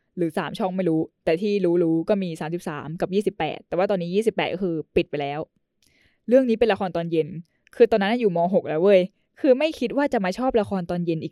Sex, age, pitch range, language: female, 10-29, 165-225 Hz, English